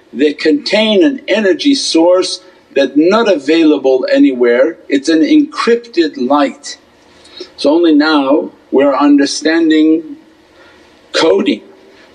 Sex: male